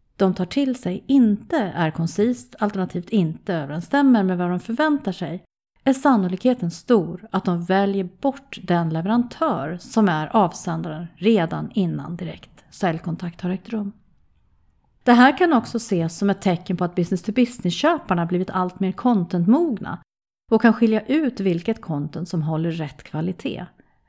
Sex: female